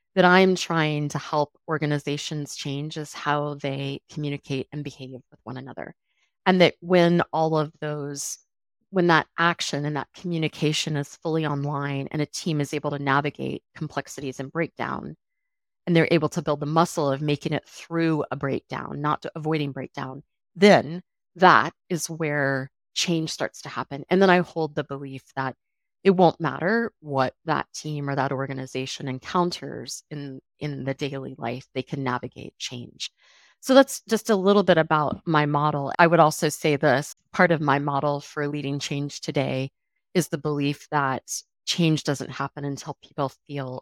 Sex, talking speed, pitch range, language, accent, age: female, 170 wpm, 140-165 Hz, English, American, 30-49